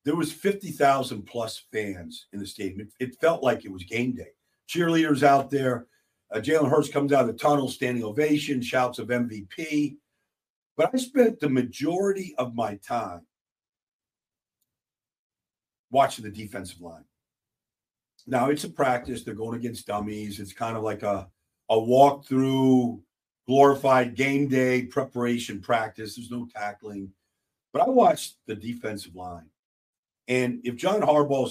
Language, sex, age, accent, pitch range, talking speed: English, male, 50-69, American, 105-140 Hz, 145 wpm